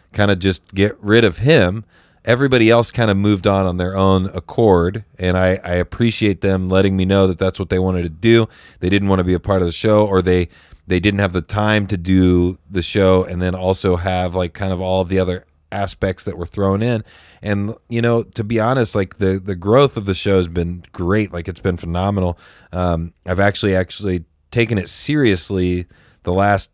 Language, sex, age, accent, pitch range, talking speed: English, male, 30-49, American, 90-105 Hz, 220 wpm